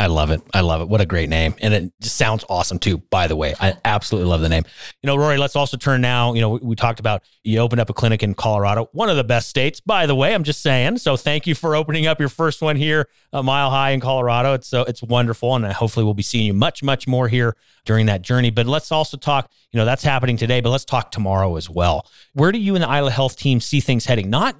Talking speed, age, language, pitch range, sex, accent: 280 wpm, 40-59, English, 110-140 Hz, male, American